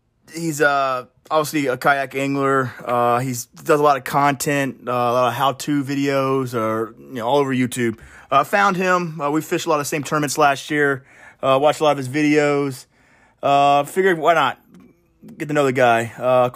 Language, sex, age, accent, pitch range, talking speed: English, male, 30-49, American, 125-150 Hz, 205 wpm